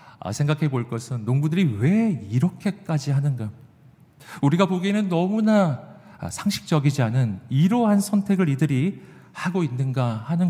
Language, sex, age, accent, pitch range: Korean, male, 40-59, native, 130-195 Hz